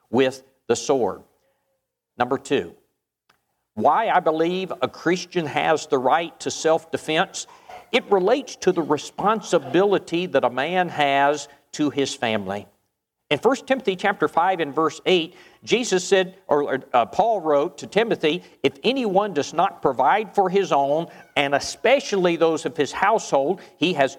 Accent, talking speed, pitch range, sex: American, 150 wpm, 145-195 Hz, male